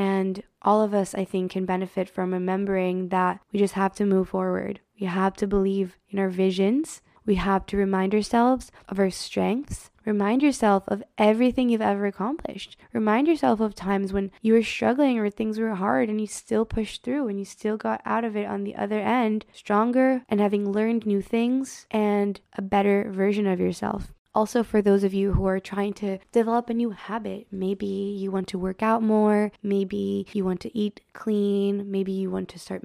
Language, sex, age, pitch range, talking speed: English, female, 20-39, 195-215 Hz, 200 wpm